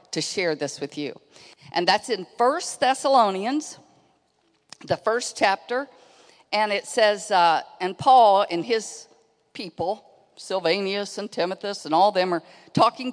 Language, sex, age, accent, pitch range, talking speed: English, female, 50-69, American, 185-245 Hz, 135 wpm